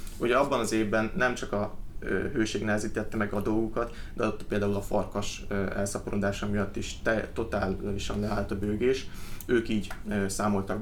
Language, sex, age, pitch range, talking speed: Hungarian, male, 30-49, 100-110 Hz, 150 wpm